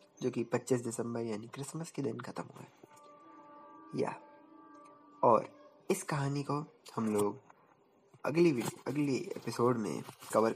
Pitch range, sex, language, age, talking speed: 110-160 Hz, male, Hindi, 20-39, 140 wpm